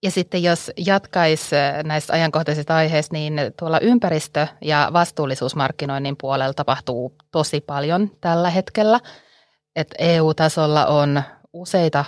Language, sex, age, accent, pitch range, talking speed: Finnish, female, 30-49, native, 140-160 Hz, 110 wpm